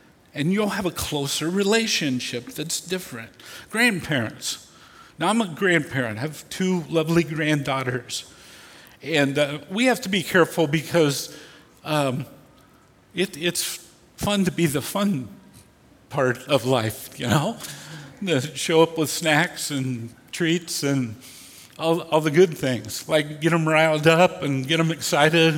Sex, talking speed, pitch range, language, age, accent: male, 145 wpm, 140-185 Hz, English, 50-69, American